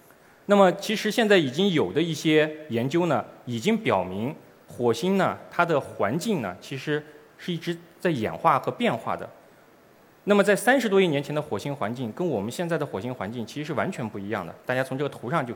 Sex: male